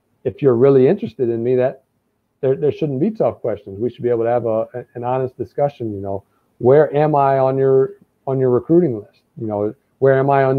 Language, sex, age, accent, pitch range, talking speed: English, male, 50-69, American, 120-145 Hz, 225 wpm